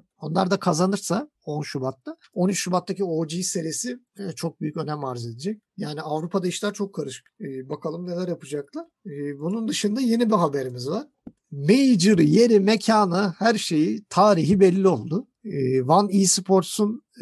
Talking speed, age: 145 wpm, 50-69